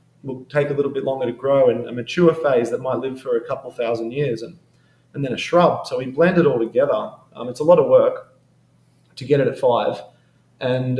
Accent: Australian